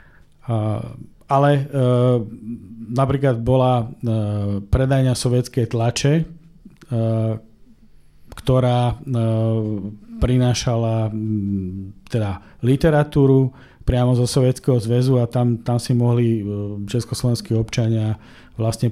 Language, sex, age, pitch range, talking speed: Slovak, male, 40-59, 110-130 Hz, 90 wpm